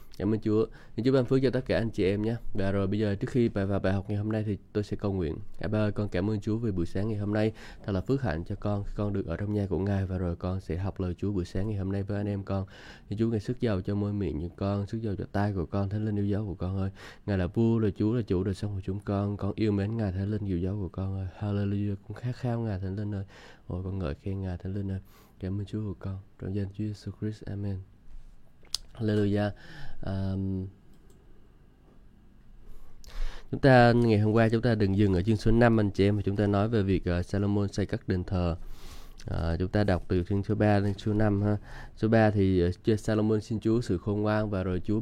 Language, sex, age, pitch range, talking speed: Vietnamese, male, 20-39, 95-110 Hz, 265 wpm